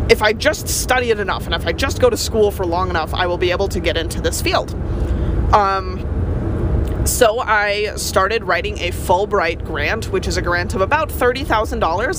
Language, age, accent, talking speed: English, 30-49, American, 195 wpm